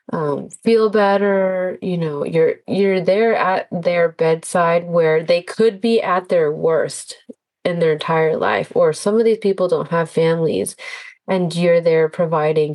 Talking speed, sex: 160 wpm, female